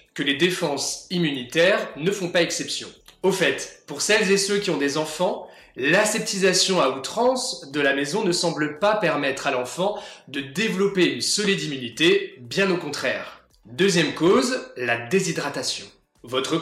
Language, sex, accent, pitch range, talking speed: French, male, French, 145-195 Hz, 155 wpm